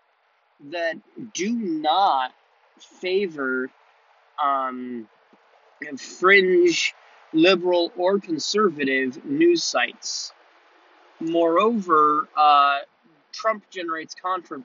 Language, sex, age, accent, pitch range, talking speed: English, male, 30-49, American, 130-220 Hz, 65 wpm